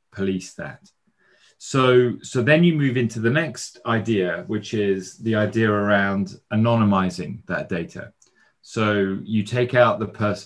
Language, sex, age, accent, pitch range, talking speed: English, male, 30-49, British, 95-115 Hz, 145 wpm